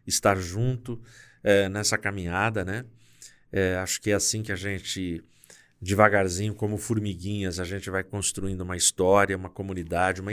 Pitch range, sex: 95-115 Hz, male